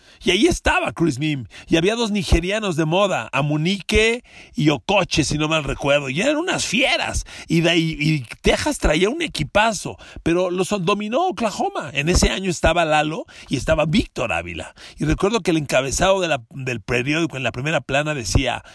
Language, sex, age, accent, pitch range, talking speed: Spanish, male, 40-59, Mexican, 130-180 Hz, 180 wpm